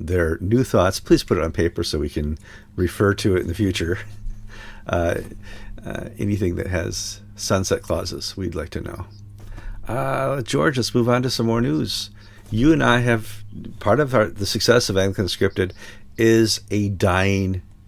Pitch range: 85-105 Hz